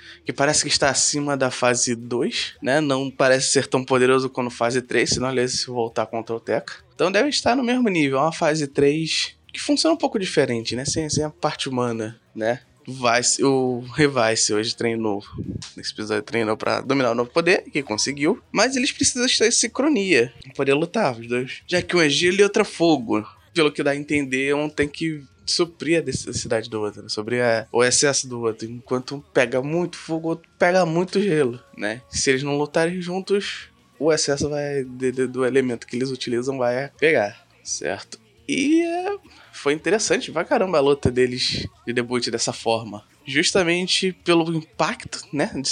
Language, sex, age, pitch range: Portuguese, male, 20-39, 120-160 Hz